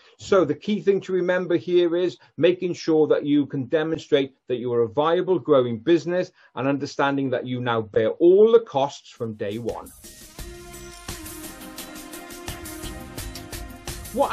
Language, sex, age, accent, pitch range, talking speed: English, male, 40-59, British, 125-165 Hz, 140 wpm